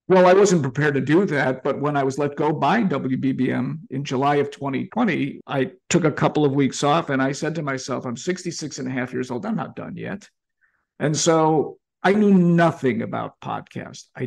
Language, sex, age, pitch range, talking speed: English, male, 50-69, 135-185 Hz, 210 wpm